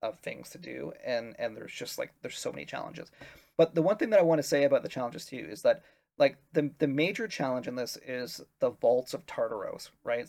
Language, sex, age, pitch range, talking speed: English, male, 30-49, 130-160 Hz, 240 wpm